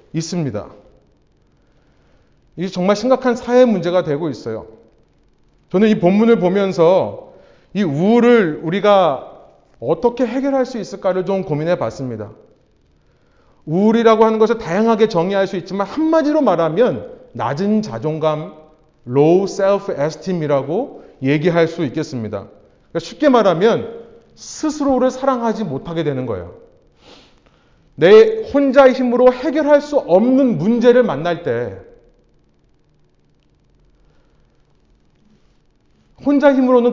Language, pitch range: Korean, 165-255 Hz